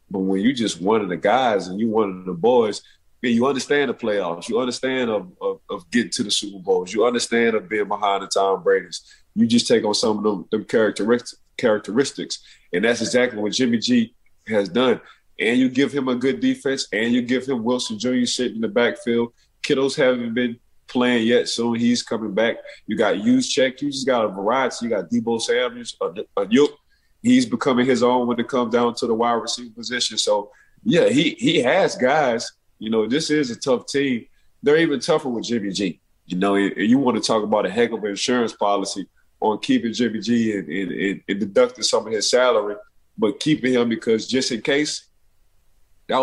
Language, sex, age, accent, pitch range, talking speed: English, male, 30-49, American, 110-140 Hz, 210 wpm